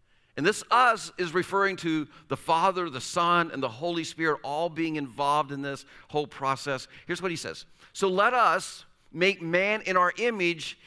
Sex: male